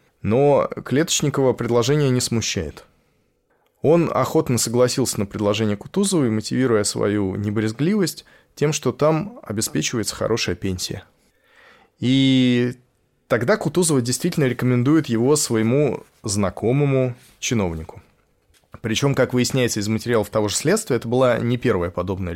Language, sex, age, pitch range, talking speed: Russian, male, 20-39, 105-135 Hz, 115 wpm